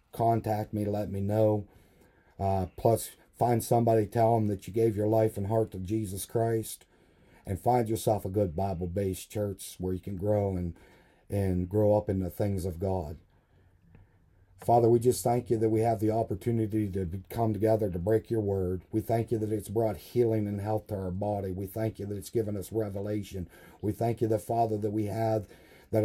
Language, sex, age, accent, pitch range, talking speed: English, male, 40-59, American, 95-110 Hz, 205 wpm